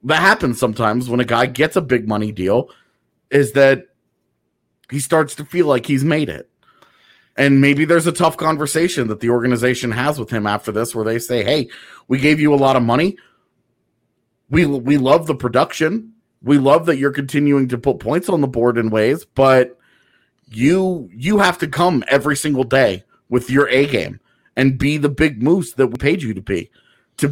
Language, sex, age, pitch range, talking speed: English, male, 30-49, 125-165 Hz, 195 wpm